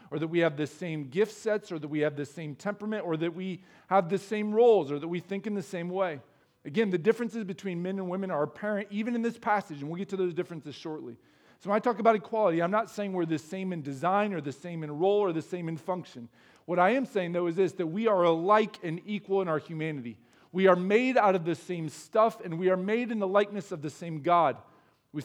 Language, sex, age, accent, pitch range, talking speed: English, male, 40-59, American, 145-190 Hz, 260 wpm